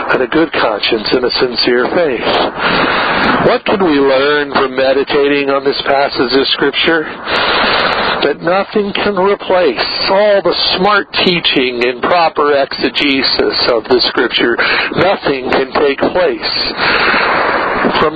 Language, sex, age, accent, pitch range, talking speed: English, male, 50-69, American, 135-175 Hz, 125 wpm